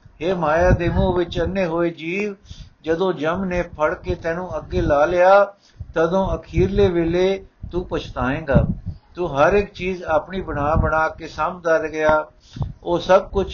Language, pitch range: Punjabi, 160-200 Hz